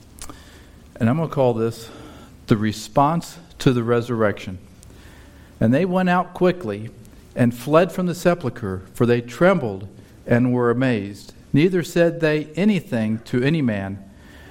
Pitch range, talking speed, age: 100-135 Hz, 140 wpm, 50-69